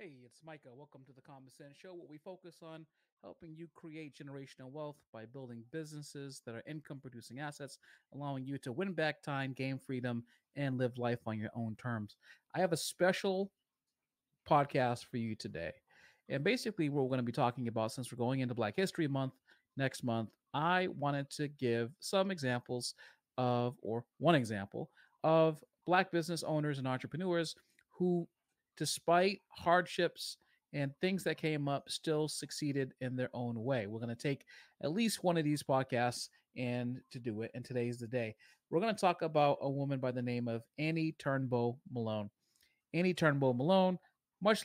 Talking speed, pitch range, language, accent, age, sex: 175 wpm, 125-160 Hz, English, American, 40-59, male